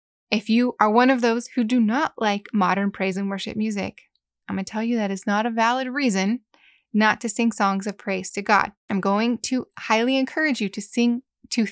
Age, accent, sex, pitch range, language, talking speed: 10-29, American, female, 200-255 Hz, English, 220 wpm